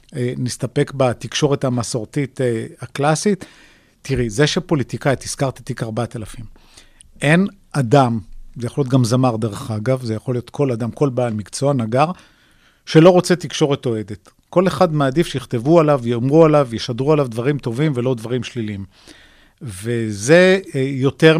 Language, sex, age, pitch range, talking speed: Hebrew, male, 50-69, 120-150 Hz, 135 wpm